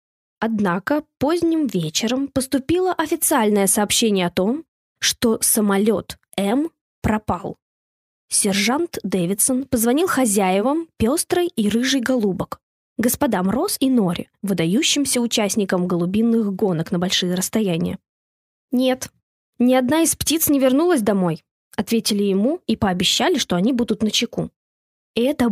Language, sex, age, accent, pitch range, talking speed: Russian, female, 20-39, native, 195-270 Hz, 115 wpm